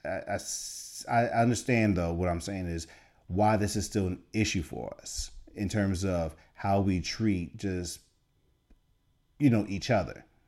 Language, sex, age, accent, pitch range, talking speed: English, male, 30-49, American, 90-120 Hz, 160 wpm